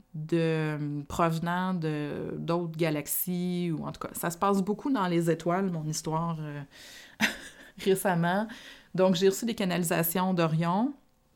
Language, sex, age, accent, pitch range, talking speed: French, female, 30-49, Canadian, 155-190 Hz, 135 wpm